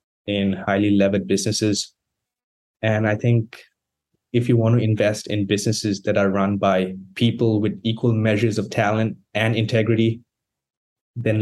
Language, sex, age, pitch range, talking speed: English, male, 20-39, 100-120 Hz, 140 wpm